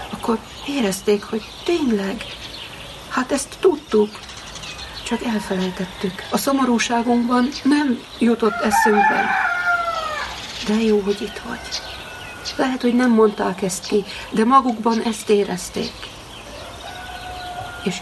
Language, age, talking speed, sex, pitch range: Hungarian, 60-79, 95 wpm, female, 205-245 Hz